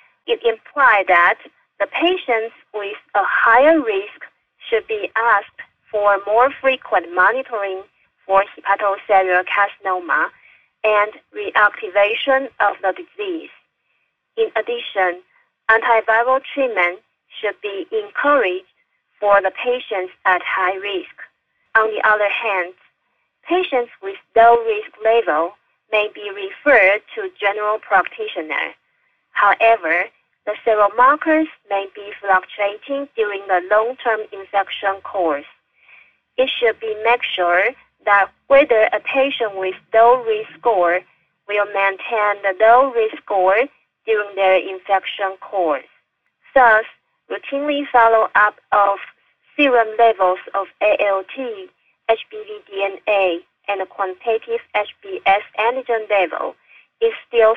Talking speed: 110 wpm